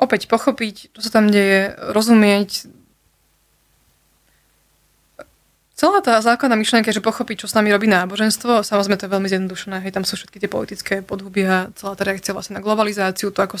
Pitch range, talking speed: 195-215 Hz, 170 wpm